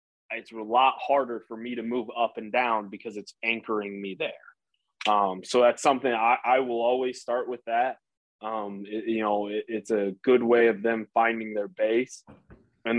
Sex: male